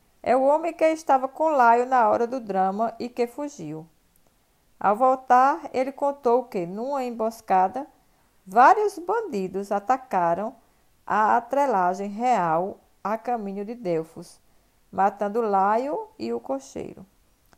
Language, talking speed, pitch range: Portuguese, 125 wpm, 195-270 Hz